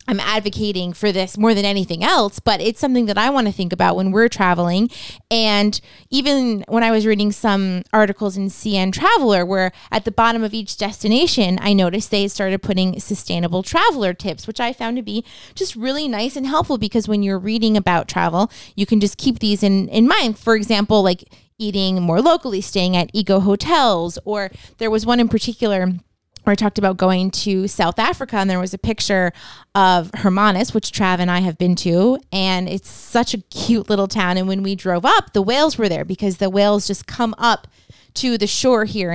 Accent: American